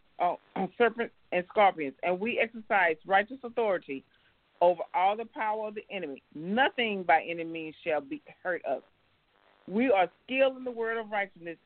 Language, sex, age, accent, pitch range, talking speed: English, female, 40-59, American, 165-220 Hz, 160 wpm